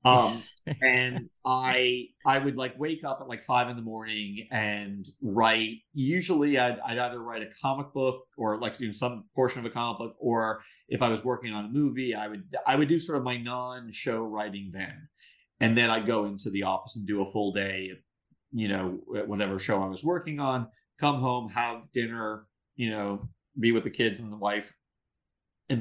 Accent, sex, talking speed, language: American, male, 200 wpm, English